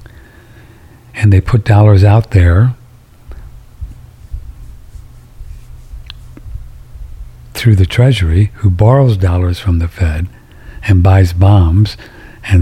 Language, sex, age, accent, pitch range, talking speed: English, male, 60-79, American, 90-115 Hz, 90 wpm